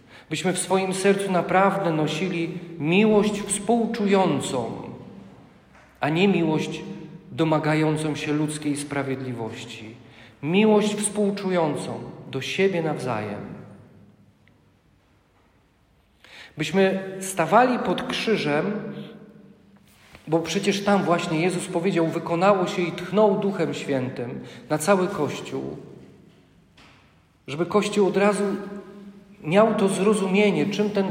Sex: male